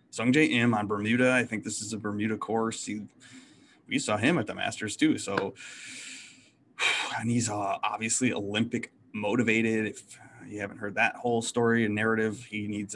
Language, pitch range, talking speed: English, 100-120 Hz, 170 wpm